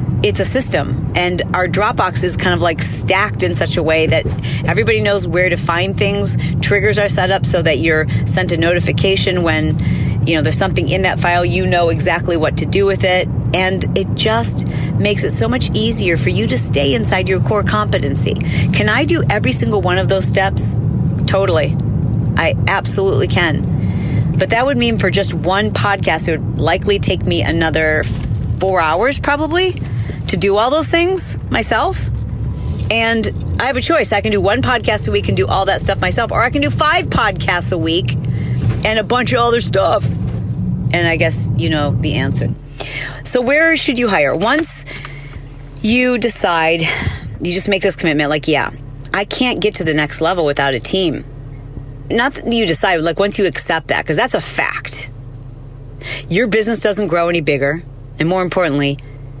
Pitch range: 130-190 Hz